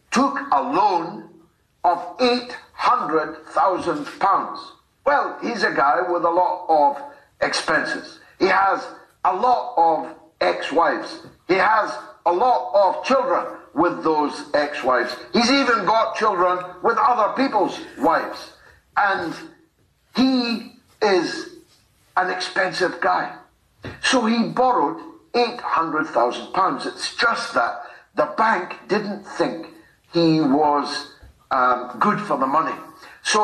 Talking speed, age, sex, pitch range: 115 wpm, 60-79, male, 170-265 Hz